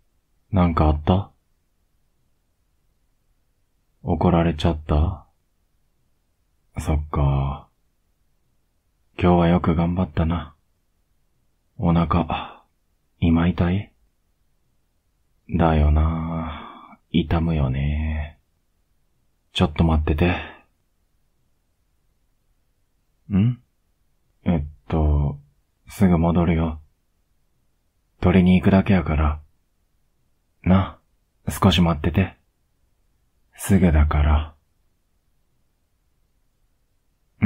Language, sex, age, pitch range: Japanese, male, 30-49, 75-90 Hz